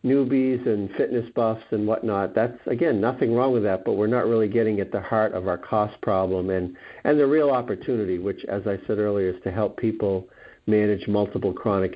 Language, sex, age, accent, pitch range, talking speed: English, male, 50-69, American, 100-115 Hz, 205 wpm